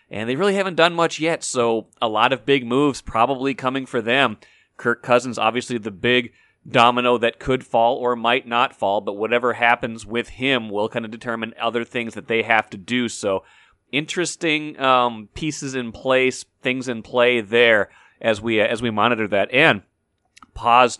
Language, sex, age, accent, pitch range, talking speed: English, male, 30-49, American, 110-135 Hz, 185 wpm